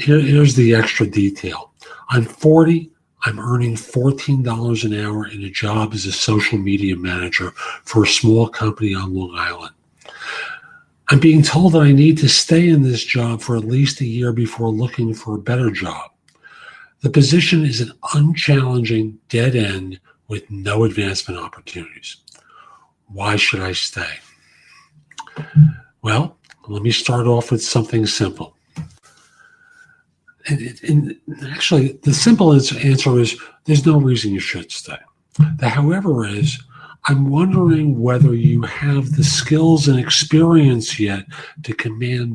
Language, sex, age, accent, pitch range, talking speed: English, male, 50-69, American, 110-150 Hz, 140 wpm